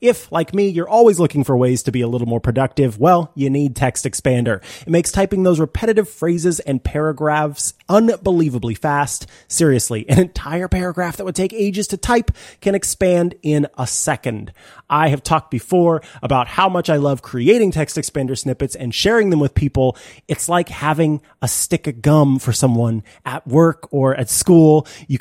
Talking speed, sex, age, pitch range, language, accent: 185 wpm, male, 30-49, 130-180 Hz, English, American